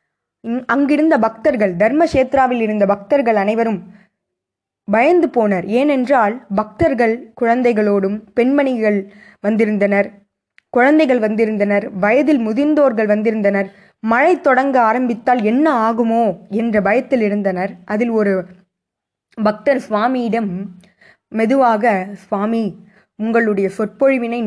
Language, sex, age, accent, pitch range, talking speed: Tamil, female, 20-39, native, 200-255 Hz, 90 wpm